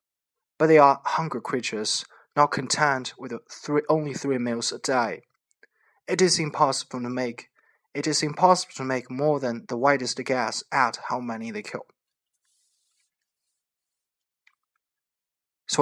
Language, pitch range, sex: Chinese, 125-185 Hz, male